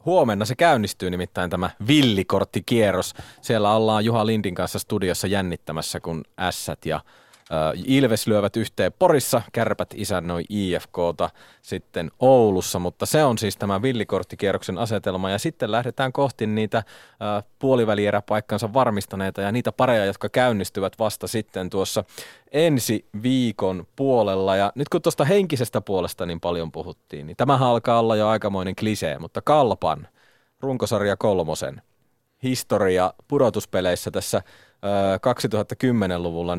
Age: 30-49